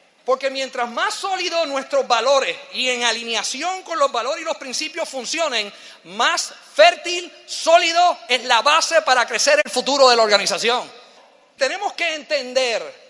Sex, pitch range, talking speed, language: male, 270-335 Hz, 145 wpm, Spanish